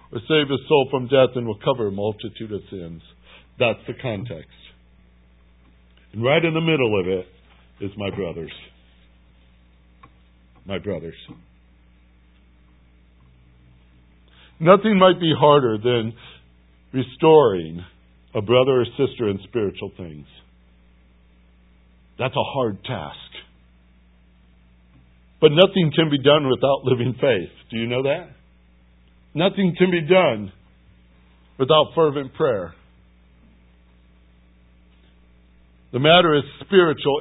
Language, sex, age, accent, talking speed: English, male, 60-79, American, 110 wpm